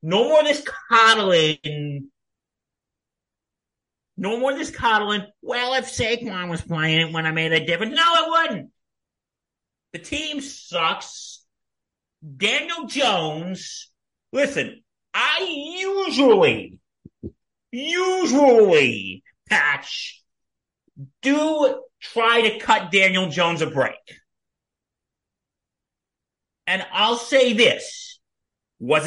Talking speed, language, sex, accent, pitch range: 95 wpm, English, male, American, 185-280 Hz